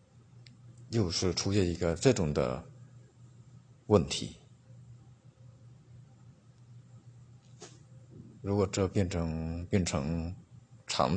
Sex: male